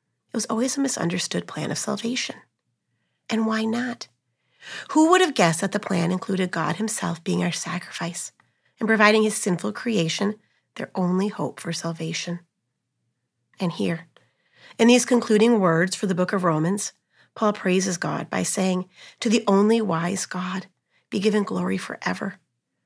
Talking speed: 150 wpm